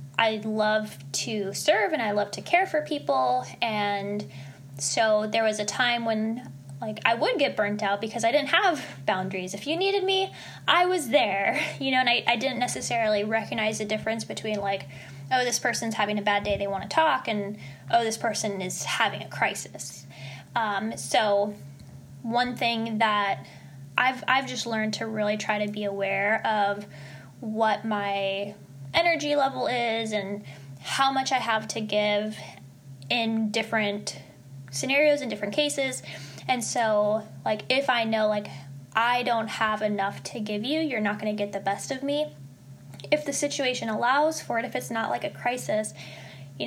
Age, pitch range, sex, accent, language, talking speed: 10-29, 200-245 Hz, female, American, English, 175 wpm